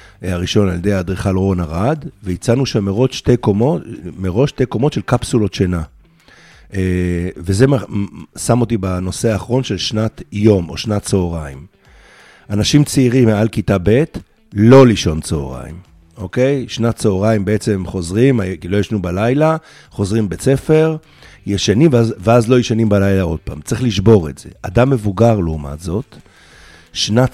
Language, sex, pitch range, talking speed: Hebrew, male, 95-120 Hz, 130 wpm